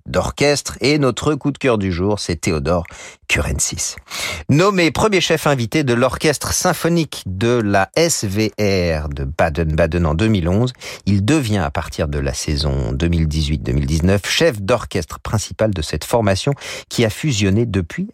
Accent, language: French, French